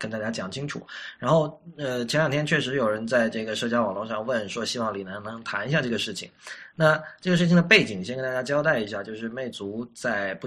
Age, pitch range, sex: 20-39, 110-150 Hz, male